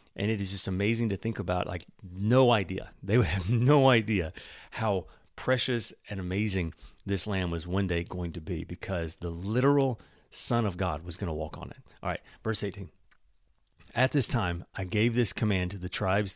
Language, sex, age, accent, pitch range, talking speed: English, male, 40-59, American, 90-120 Hz, 200 wpm